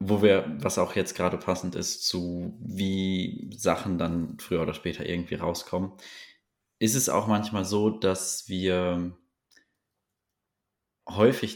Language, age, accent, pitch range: German, 20-39, German, 90-105 Hz